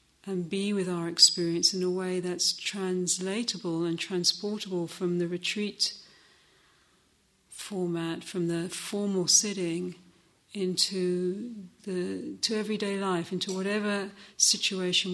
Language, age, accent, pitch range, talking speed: English, 50-69, British, 175-195 Hz, 110 wpm